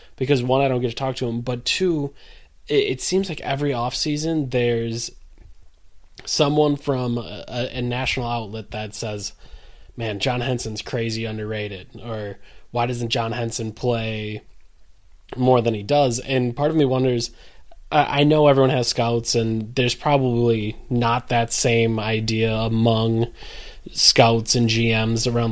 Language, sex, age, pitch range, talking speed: English, male, 20-39, 115-135 Hz, 150 wpm